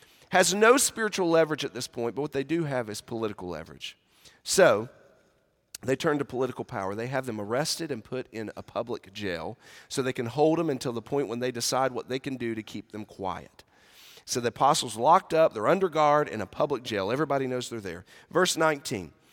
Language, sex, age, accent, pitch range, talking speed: English, male, 40-59, American, 125-185 Hz, 210 wpm